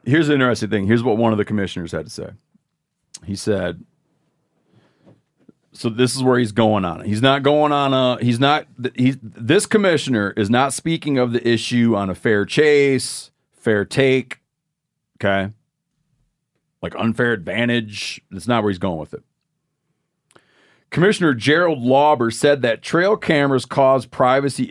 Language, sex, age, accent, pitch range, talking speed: English, male, 40-59, American, 115-150 Hz, 155 wpm